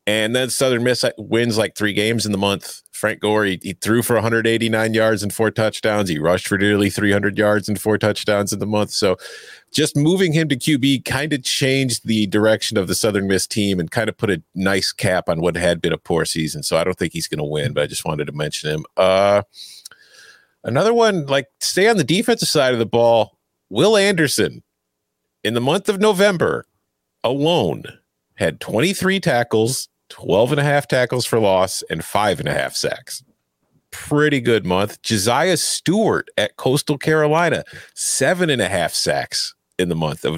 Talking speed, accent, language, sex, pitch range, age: 195 wpm, American, English, male, 100-145 Hz, 40-59